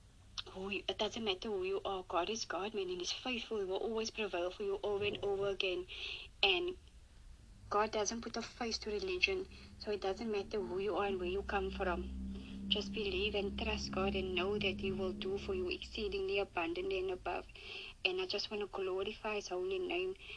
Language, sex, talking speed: English, female, 205 wpm